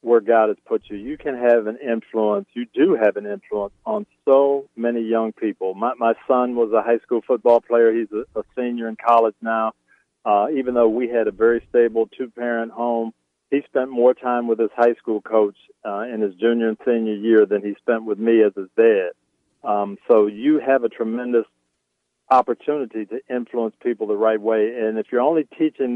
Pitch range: 105-120 Hz